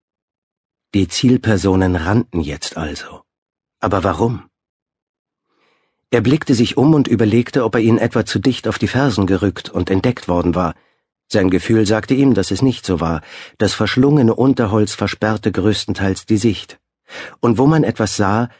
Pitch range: 95-115 Hz